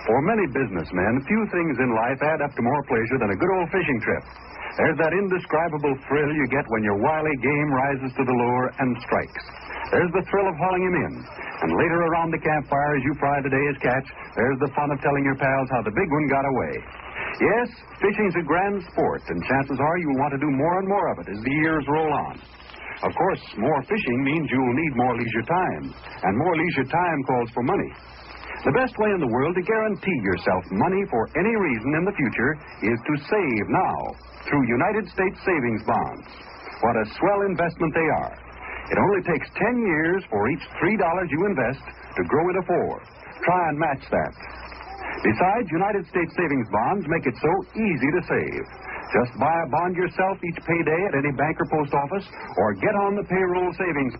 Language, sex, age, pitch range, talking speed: English, male, 60-79, 135-185 Hz, 205 wpm